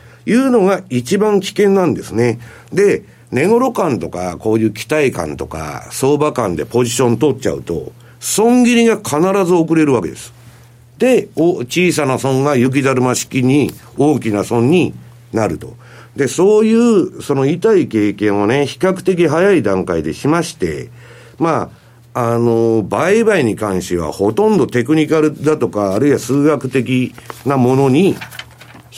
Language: Japanese